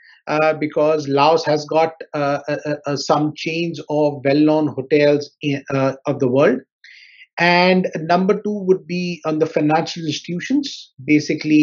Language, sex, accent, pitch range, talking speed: English, male, Indian, 145-175 Hz, 140 wpm